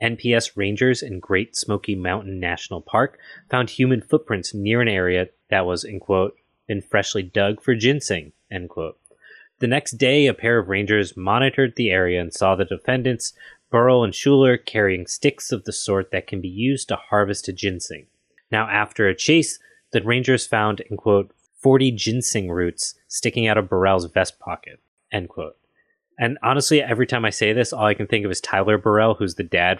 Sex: male